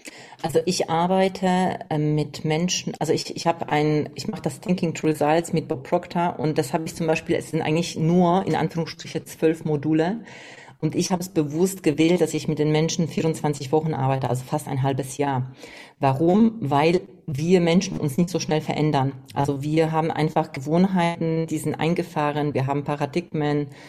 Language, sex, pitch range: German, female, 150-170 Hz